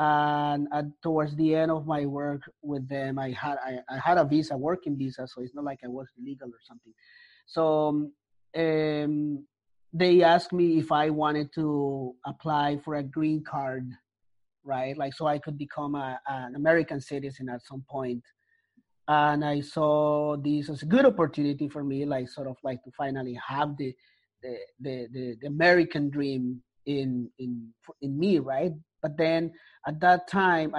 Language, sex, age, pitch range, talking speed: English, male, 30-49, 135-155 Hz, 175 wpm